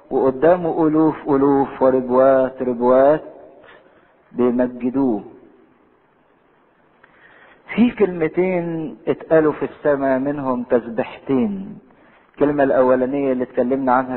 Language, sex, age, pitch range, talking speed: English, male, 50-69, 115-135 Hz, 75 wpm